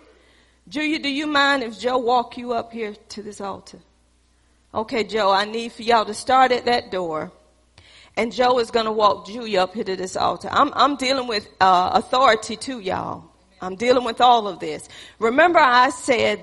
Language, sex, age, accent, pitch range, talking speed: English, female, 40-59, American, 205-270 Hz, 195 wpm